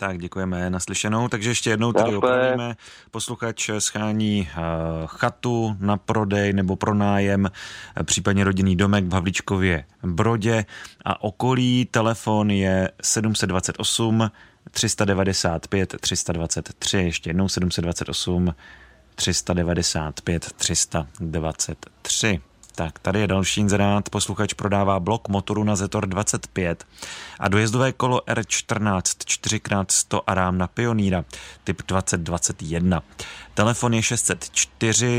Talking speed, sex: 100 wpm, male